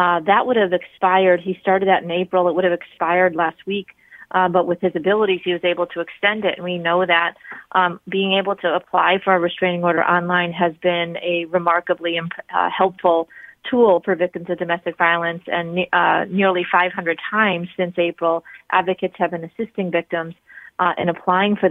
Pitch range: 170-185 Hz